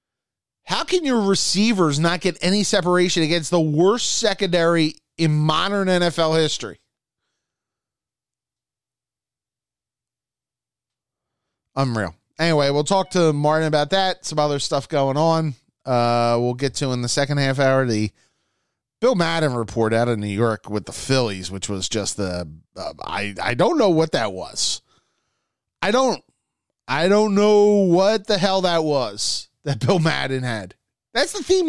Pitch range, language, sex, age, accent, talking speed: 115-170 Hz, English, male, 30-49, American, 150 wpm